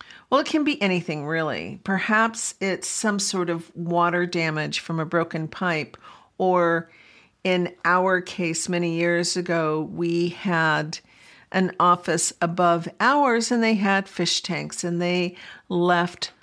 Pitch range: 170-220 Hz